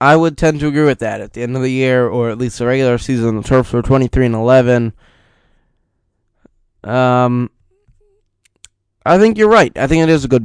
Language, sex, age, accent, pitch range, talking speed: English, male, 20-39, American, 115-140 Hz, 205 wpm